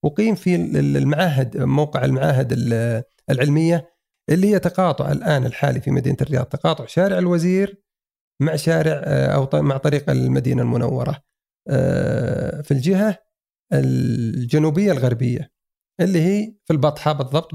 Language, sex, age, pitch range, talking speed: Arabic, male, 40-59, 135-180 Hz, 115 wpm